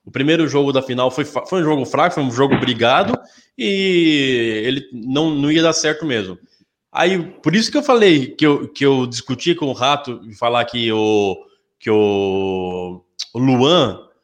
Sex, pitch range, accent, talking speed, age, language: male, 125-170 Hz, Brazilian, 180 wpm, 20-39, Portuguese